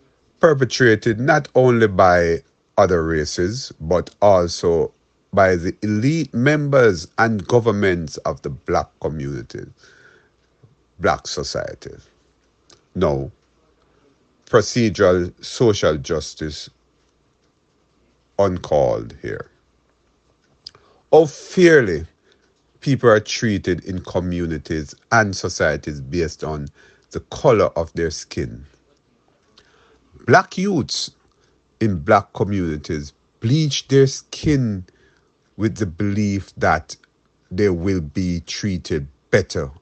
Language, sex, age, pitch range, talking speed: English, male, 50-69, 75-110 Hz, 90 wpm